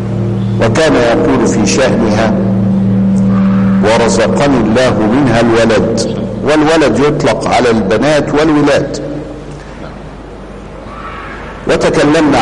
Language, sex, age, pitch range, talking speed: Arabic, male, 50-69, 115-145 Hz, 70 wpm